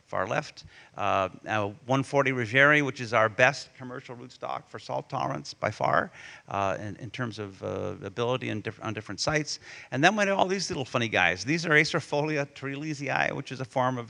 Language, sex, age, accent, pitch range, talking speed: English, male, 50-69, American, 105-135 Hz, 195 wpm